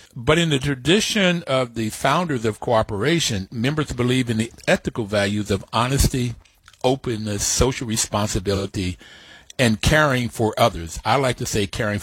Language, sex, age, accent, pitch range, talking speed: English, male, 60-79, American, 105-140 Hz, 145 wpm